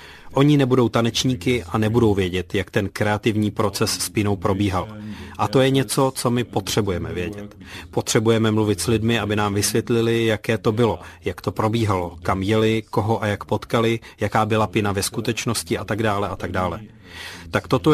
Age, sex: 30-49, male